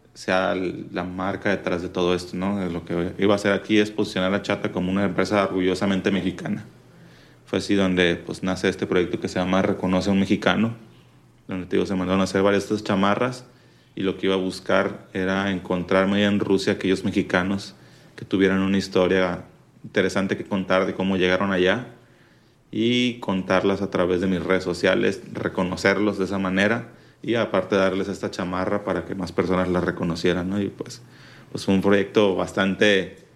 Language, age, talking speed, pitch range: Spanish, 30-49, 185 wpm, 95-105 Hz